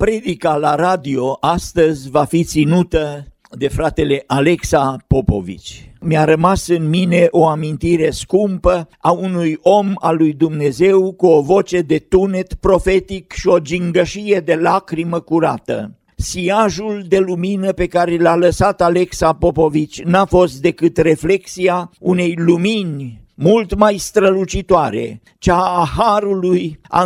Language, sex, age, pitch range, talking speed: Romanian, male, 50-69, 160-190 Hz, 130 wpm